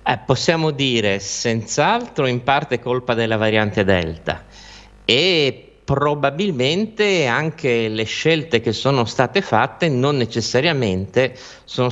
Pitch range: 105-150 Hz